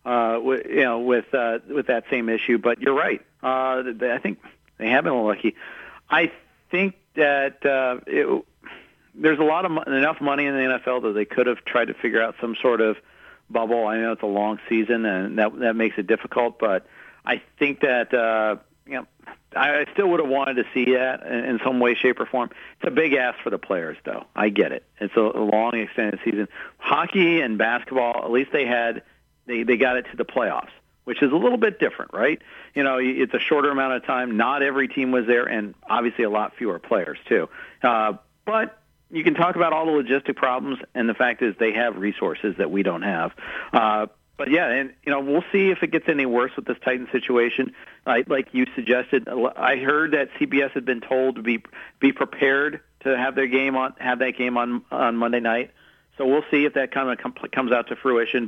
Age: 50-69